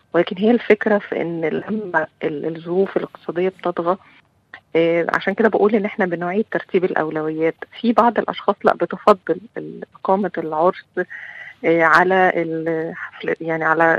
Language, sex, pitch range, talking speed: Arabic, female, 160-190 Hz, 130 wpm